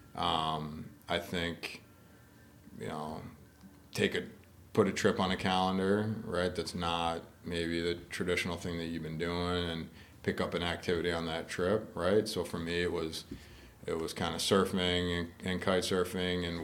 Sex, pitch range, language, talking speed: male, 80-90 Hz, English, 170 wpm